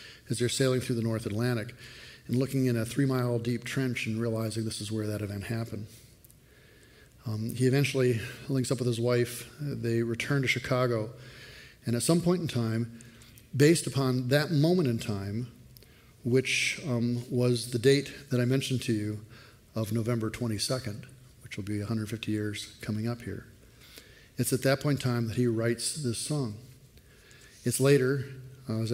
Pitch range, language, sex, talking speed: 110-130 Hz, English, male, 170 wpm